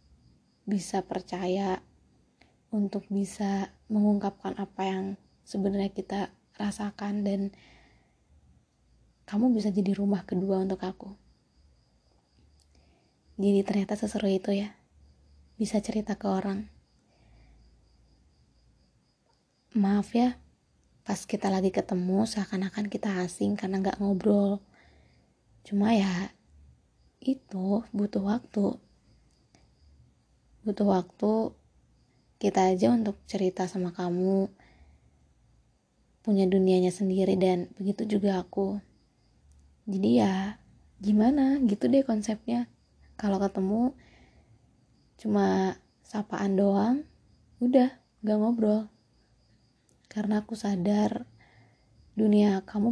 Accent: native